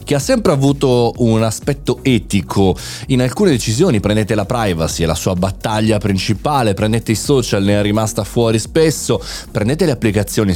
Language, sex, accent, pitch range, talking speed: Italian, male, native, 95-130 Hz, 165 wpm